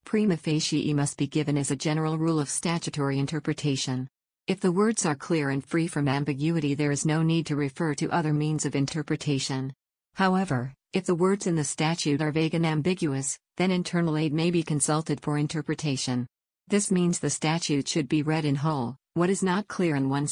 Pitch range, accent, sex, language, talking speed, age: 130-165 Hz, American, female, English, 195 wpm, 50-69